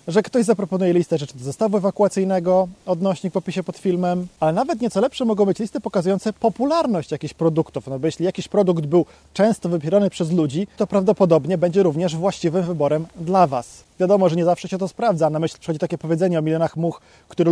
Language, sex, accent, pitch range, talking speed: Polish, male, native, 165-205 Hz, 200 wpm